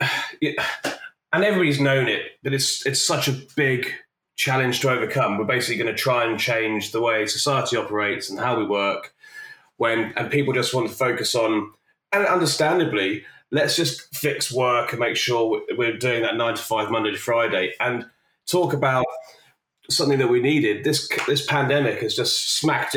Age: 30-49